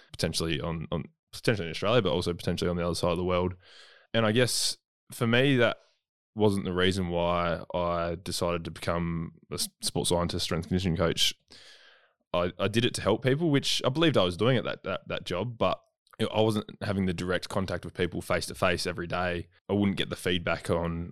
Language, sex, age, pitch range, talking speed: English, male, 20-39, 85-95 Hz, 205 wpm